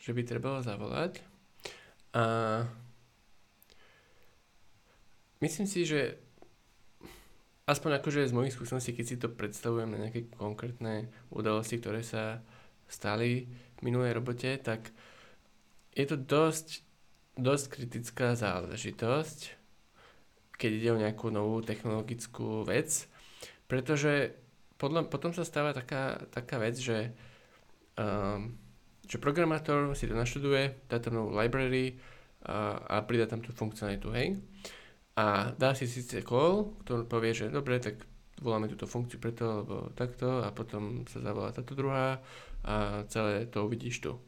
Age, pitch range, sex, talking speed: 20-39, 110-135 Hz, male, 125 wpm